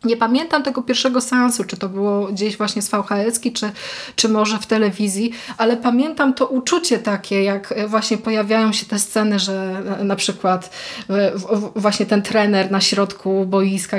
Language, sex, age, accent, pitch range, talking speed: Polish, female, 20-39, native, 200-235 Hz, 160 wpm